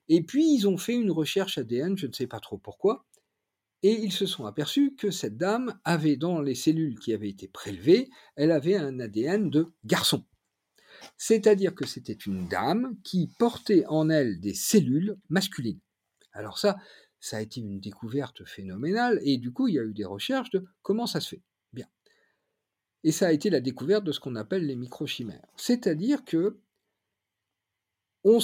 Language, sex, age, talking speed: French, male, 50-69, 180 wpm